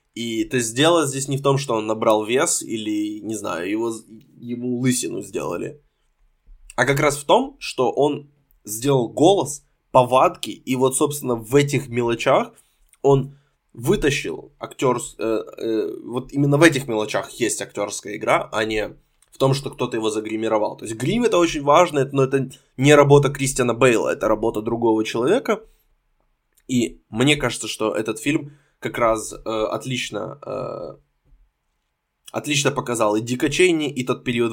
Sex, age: male, 20-39